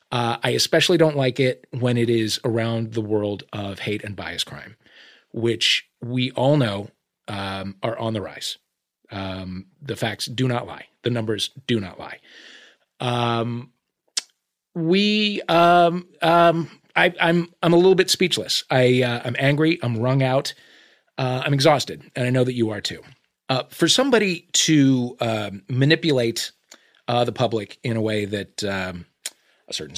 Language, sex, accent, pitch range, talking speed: English, male, American, 105-135 Hz, 160 wpm